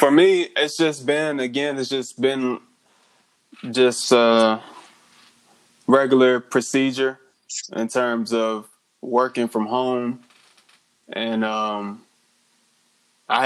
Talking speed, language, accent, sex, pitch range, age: 100 wpm, English, American, male, 115-130 Hz, 20-39